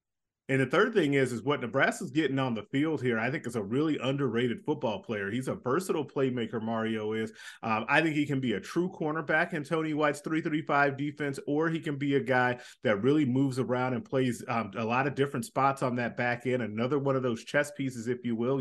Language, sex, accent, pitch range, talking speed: English, male, American, 120-140 Hz, 230 wpm